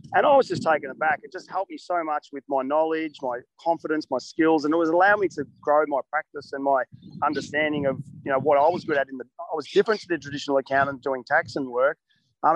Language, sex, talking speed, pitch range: English, male, 255 wpm, 135-170 Hz